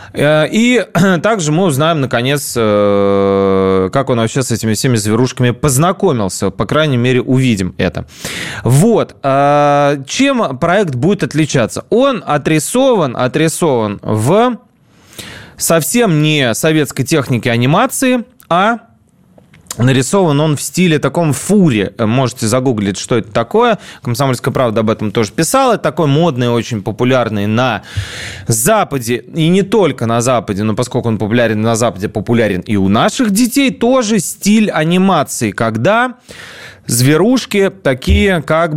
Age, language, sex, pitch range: 20-39, Russian, male, 115-170 Hz